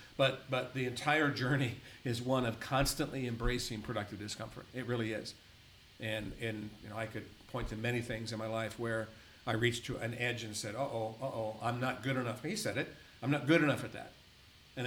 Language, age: English, 50-69